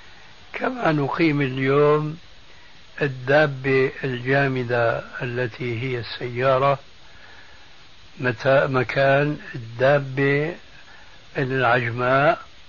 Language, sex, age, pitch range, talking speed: Arabic, male, 60-79, 120-140 Hz, 50 wpm